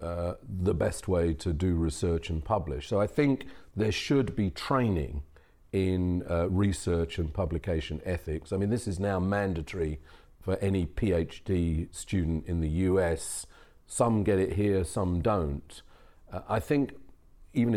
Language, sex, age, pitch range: English, male, 40-59, 85-105 Hz